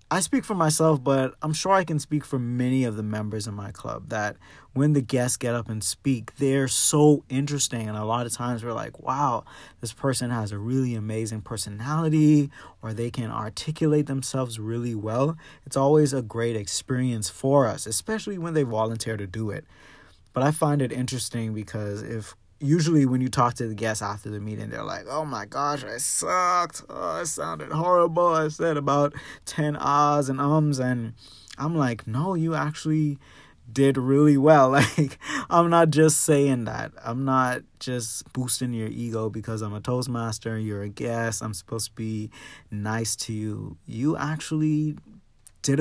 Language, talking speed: English, 180 wpm